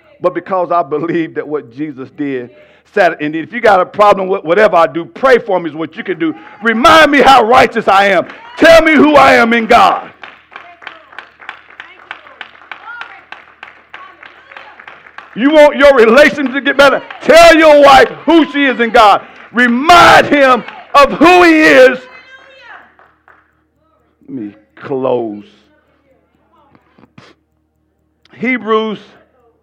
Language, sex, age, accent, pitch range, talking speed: English, male, 50-69, American, 170-275 Hz, 130 wpm